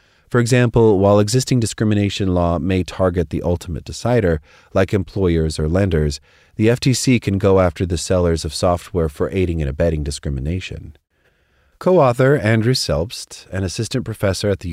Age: 30-49